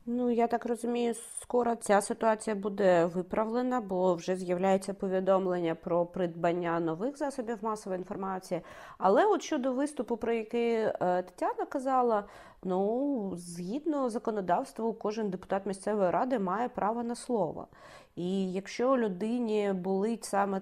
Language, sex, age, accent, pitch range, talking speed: Ukrainian, female, 30-49, native, 185-250 Hz, 125 wpm